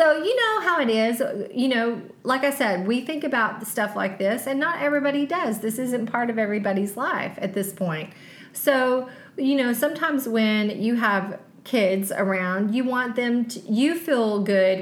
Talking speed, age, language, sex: 185 wpm, 30-49, English, female